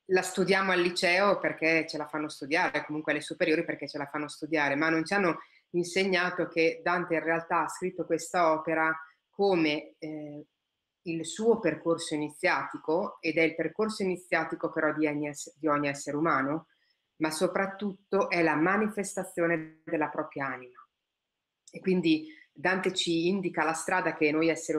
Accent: native